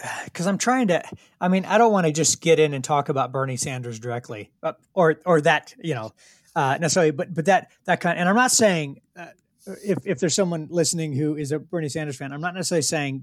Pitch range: 120-160 Hz